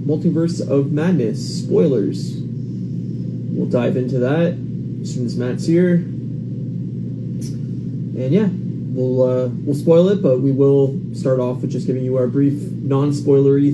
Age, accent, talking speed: 30-49, American, 145 wpm